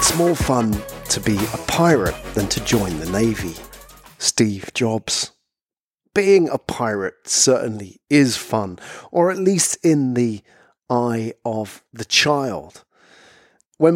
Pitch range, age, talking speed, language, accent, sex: 110-150 Hz, 40-59, 130 wpm, English, British, male